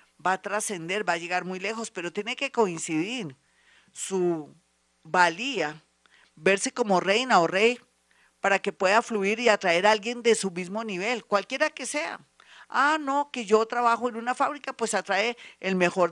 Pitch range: 185-235 Hz